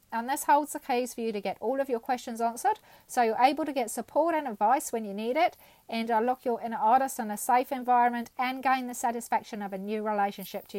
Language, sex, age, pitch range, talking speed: English, female, 40-59, 210-255 Hz, 245 wpm